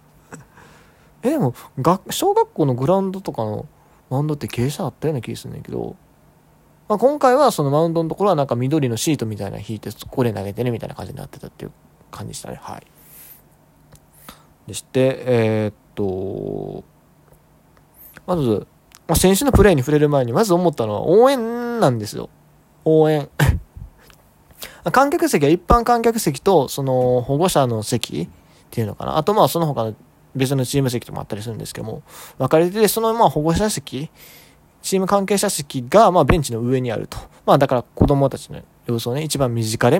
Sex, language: male, Japanese